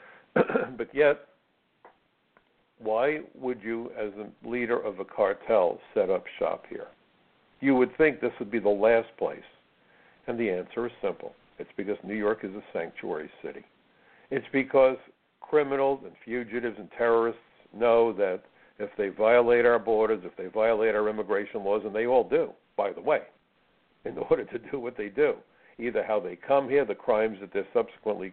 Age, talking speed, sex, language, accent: 60-79, 170 wpm, male, English, American